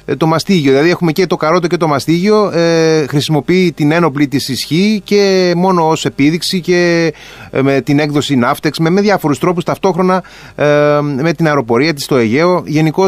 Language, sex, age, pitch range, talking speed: Greek, male, 30-49, 130-170 Hz, 175 wpm